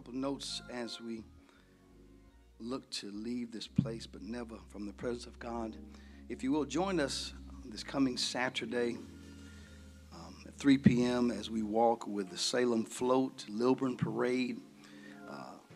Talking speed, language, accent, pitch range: 145 wpm, English, American, 95-115 Hz